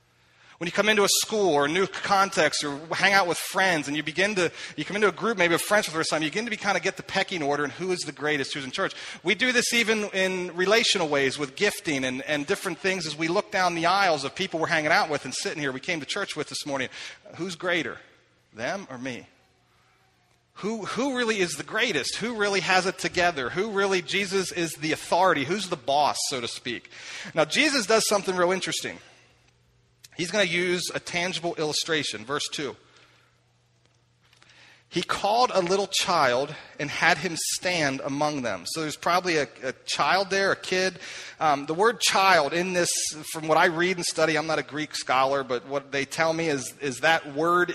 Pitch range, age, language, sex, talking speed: 145-190 Hz, 40-59, English, male, 215 wpm